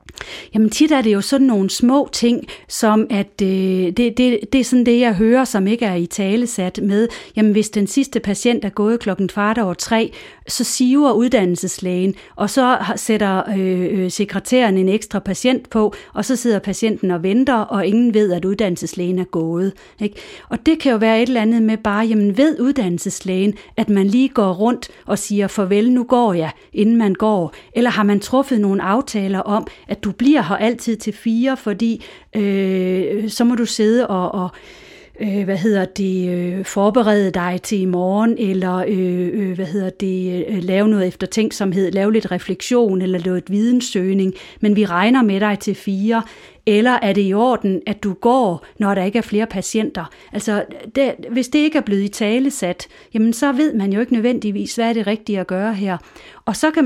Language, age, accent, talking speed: Danish, 40-59, native, 190 wpm